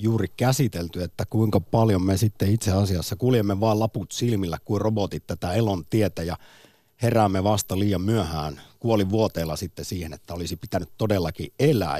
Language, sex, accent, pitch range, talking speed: Finnish, male, native, 95-120 Hz, 155 wpm